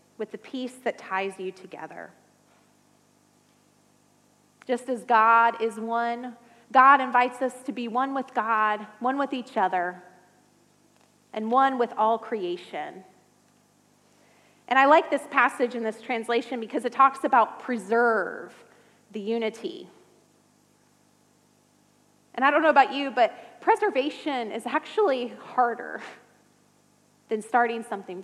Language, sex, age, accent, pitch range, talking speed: English, female, 30-49, American, 225-270 Hz, 125 wpm